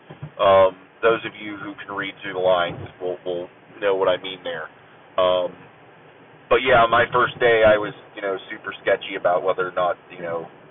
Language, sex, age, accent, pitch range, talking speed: English, male, 30-49, American, 95-125 Hz, 195 wpm